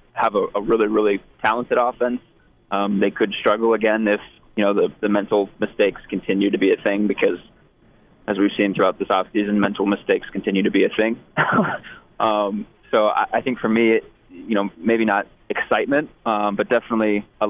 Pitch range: 105-150 Hz